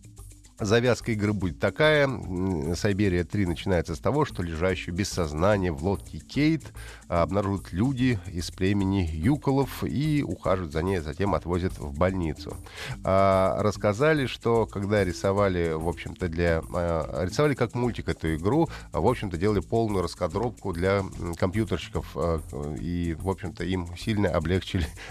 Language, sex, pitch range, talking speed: Russian, male, 90-110 Hz, 125 wpm